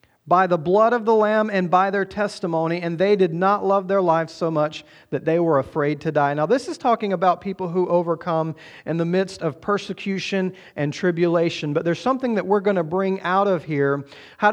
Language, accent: English, American